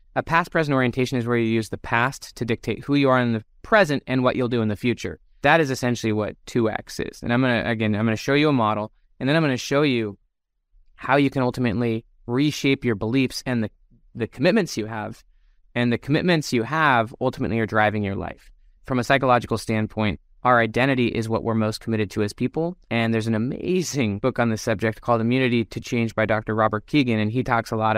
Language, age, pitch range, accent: English, 20-39, 110-130 Hz, American